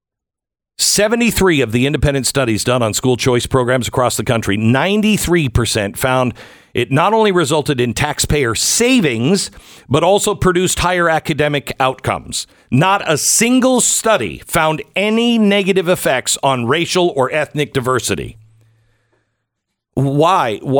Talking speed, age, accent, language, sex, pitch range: 125 wpm, 50-69, American, English, male, 120-175 Hz